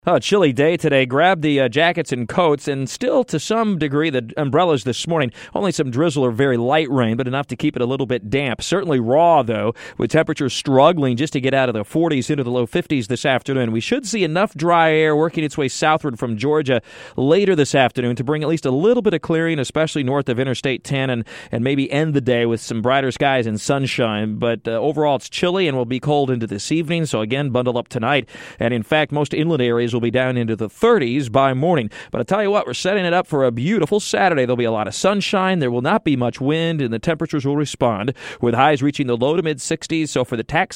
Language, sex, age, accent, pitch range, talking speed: English, male, 40-59, American, 125-165 Hz, 245 wpm